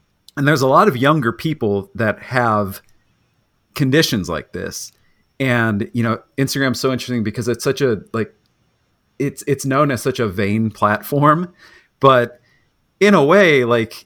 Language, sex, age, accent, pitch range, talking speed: English, male, 40-59, American, 110-135 Hz, 155 wpm